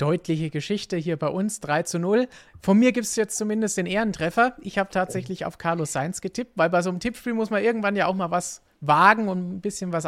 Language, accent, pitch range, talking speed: German, German, 150-185 Hz, 240 wpm